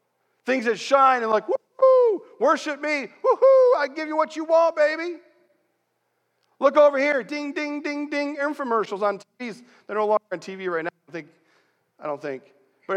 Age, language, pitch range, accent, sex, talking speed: 40-59, English, 185-300 Hz, American, male, 185 wpm